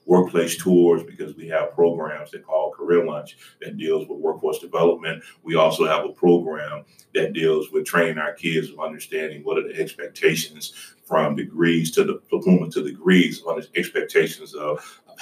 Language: English